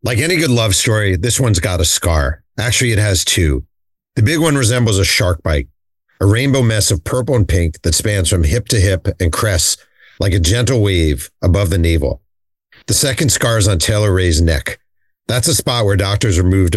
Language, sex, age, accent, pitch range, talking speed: English, male, 40-59, American, 85-110 Hz, 205 wpm